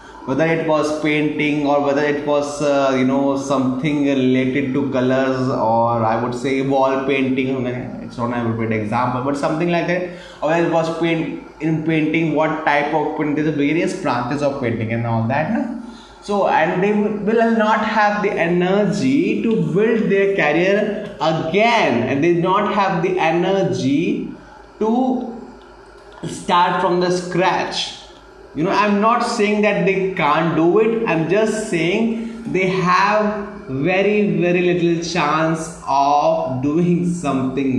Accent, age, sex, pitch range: Indian, 20-39, male, 140-200 Hz